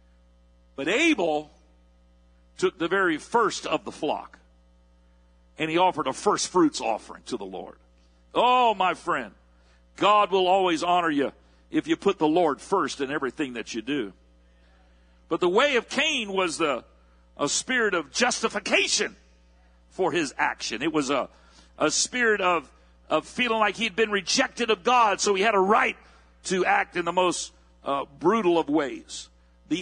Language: English